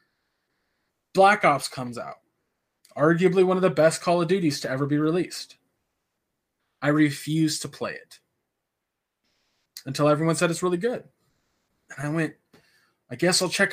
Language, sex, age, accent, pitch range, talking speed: English, male, 20-39, American, 150-190 Hz, 150 wpm